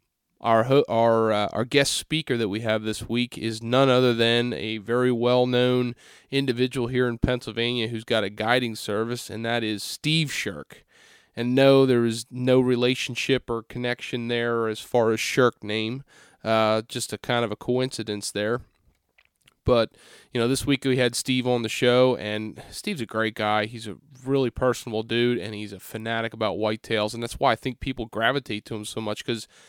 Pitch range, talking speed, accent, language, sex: 110-125 Hz, 190 wpm, American, English, male